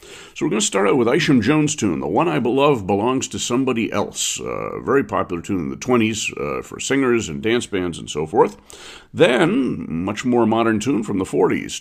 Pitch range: 95-120 Hz